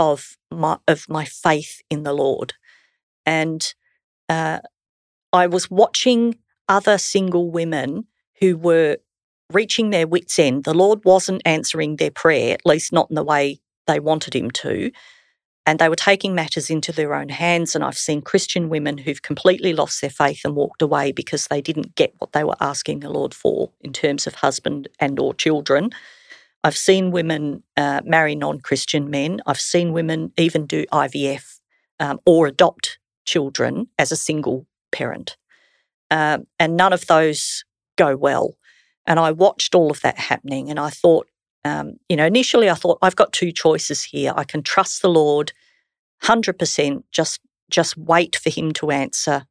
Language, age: English, 50-69